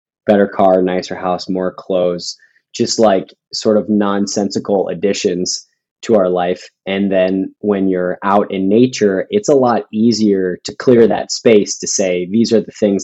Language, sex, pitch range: English, male, 100-120 Hz